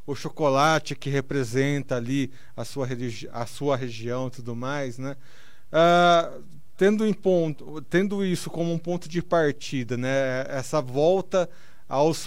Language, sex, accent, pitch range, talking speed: Portuguese, male, Brazilian, 130-165 Hz, 145 wpm